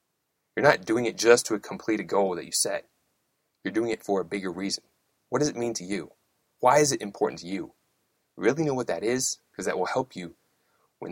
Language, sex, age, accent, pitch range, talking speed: English, male, 30-49, American, 105-130 Hz, 225 wpm